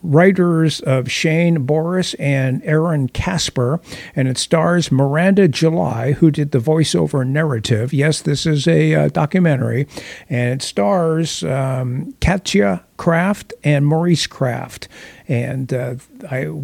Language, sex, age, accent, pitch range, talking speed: English, male, 50-69, American, 130-160 Hz, 125 wpm